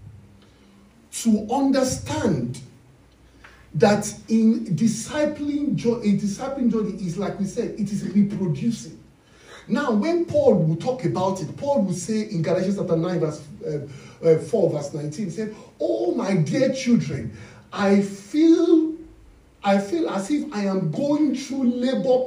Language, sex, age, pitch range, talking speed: English, male, 50-69, 150-235 Hz, 140 wpm